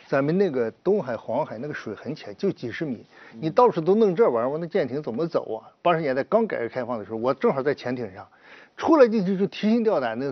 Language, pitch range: Chinese, 140-215 Hz